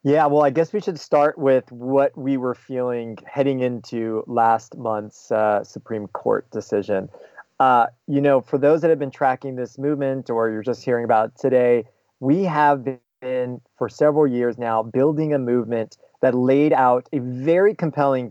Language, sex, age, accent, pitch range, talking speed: English, male, 30-49, American, 125-150 Hz, 175 wpm